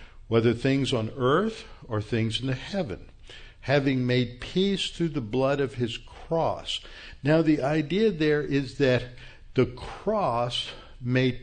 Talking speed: 140 wpm